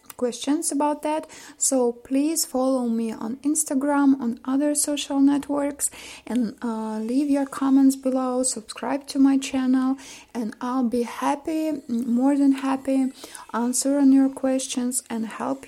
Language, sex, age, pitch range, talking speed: Russian, female, 20-39, 235-280 Hz, 140 wpm